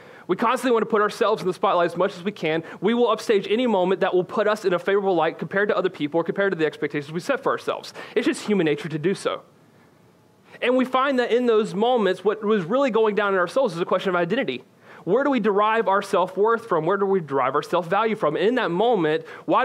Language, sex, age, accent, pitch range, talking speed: English, male, 30-49, American, 185-225 Hz, 260 wpm